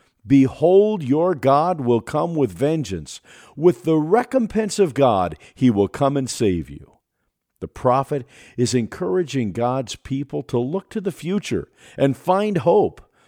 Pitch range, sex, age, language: 100-165 Hz, male, 50-69, English